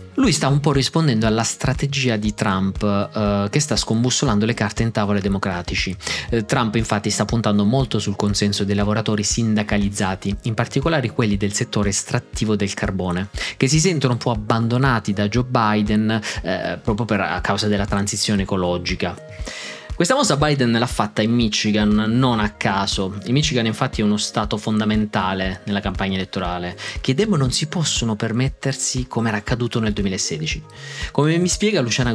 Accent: native